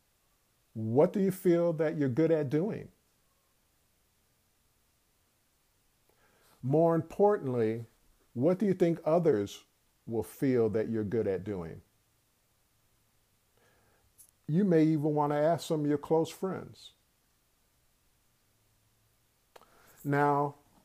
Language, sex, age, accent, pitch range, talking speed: English, male, 50-69, American, 110-150 Hz, 100 wpm